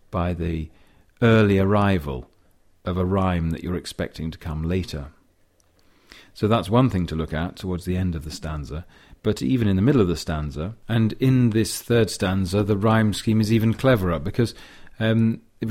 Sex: male